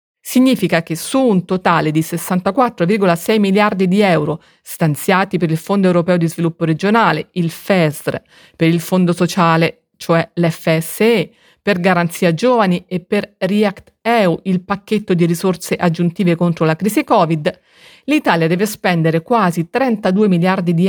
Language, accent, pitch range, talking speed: Italian, native, 170-210 Hz, 140 wpm